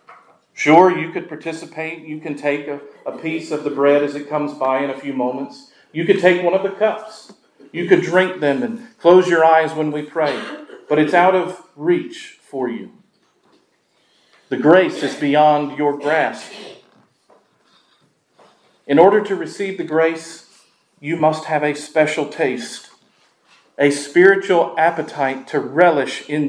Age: 40-59